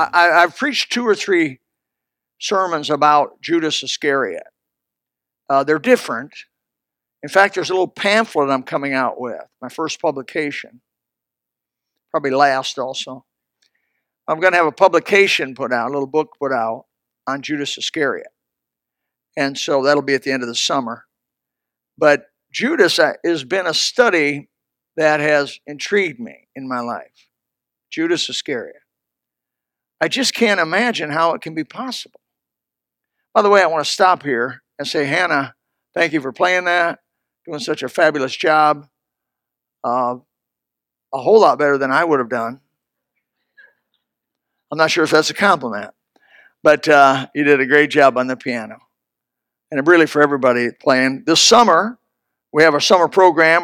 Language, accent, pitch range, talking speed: English, American, 135-175 Hz, 155 wpm